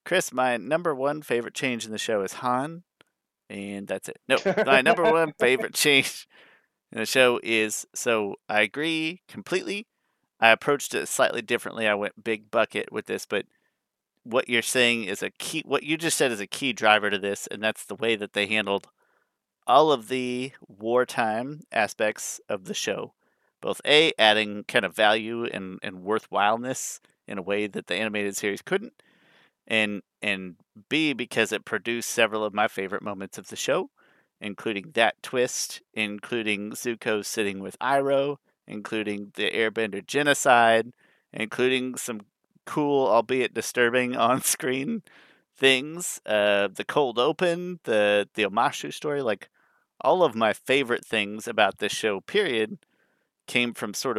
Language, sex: English, male